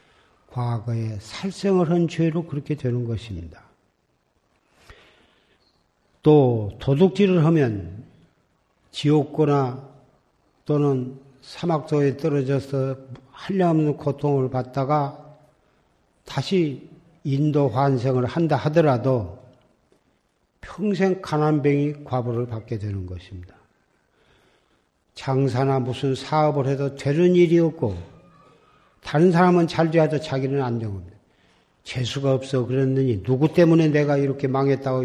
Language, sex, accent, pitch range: Korean, male, native, 125-155 Hz